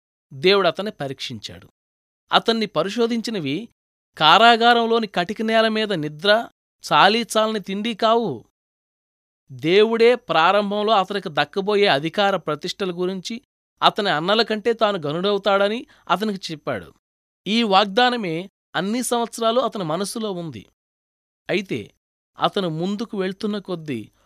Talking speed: 85 wpm